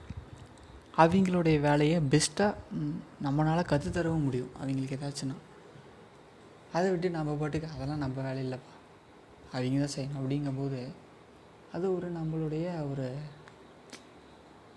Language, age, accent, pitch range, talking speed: Tamil, 20-39, native, 130-160 Hz, 100 wpm